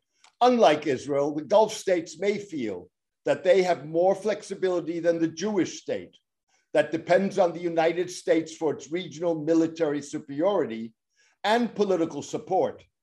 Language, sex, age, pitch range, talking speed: English, male, 60-79, 155-195 Hz, 140 wpm